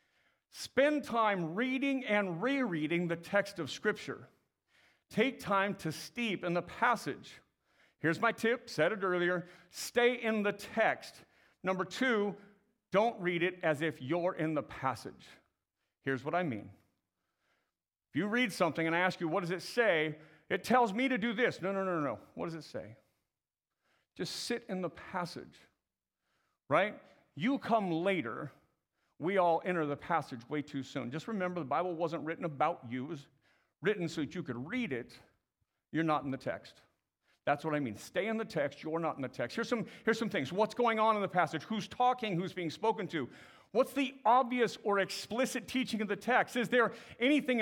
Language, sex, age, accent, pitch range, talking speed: English, male, 50-69, American, 165-230 Hz, 185 wpm